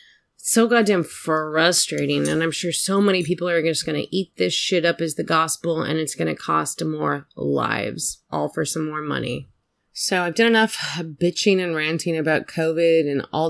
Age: 20-39